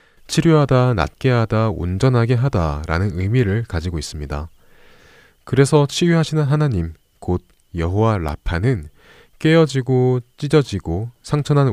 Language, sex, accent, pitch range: Korean, male, native, 85-130 Hz